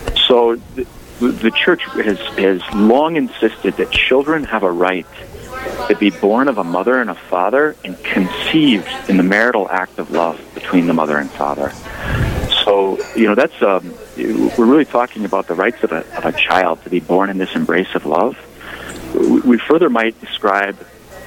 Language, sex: English, male